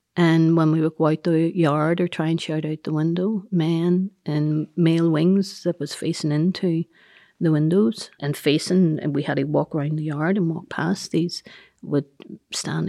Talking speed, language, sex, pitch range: 190 wpm, English, female, 155-175 Hz